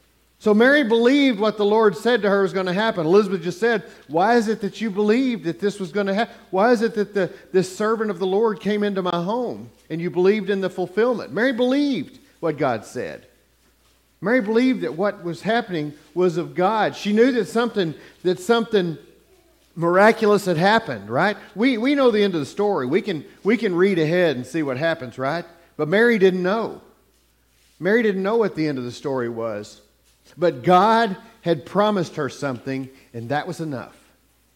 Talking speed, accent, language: 200 wpm, American, English